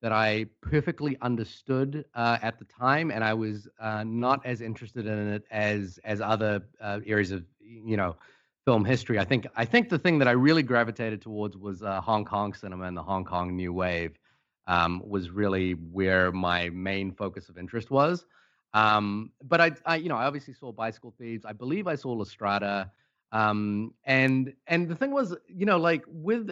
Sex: male